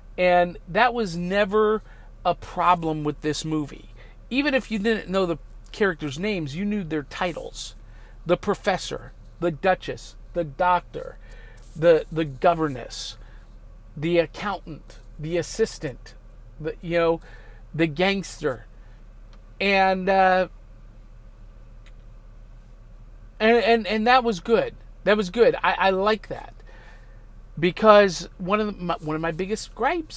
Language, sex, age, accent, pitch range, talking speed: English, male, 40-59, American, 125-205 Hz, 125 wpm